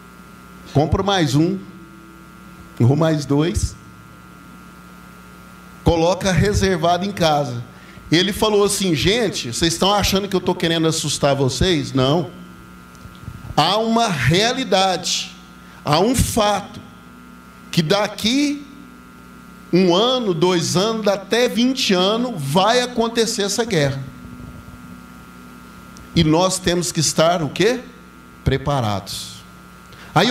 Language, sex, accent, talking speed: Portuguese, male, Brazilian, 105 wpm